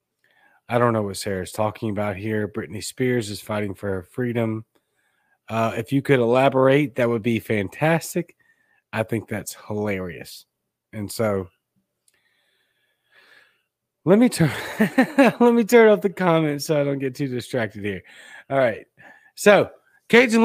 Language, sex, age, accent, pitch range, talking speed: English, male, 30-49, American, 115-155 Hz, 150 wpm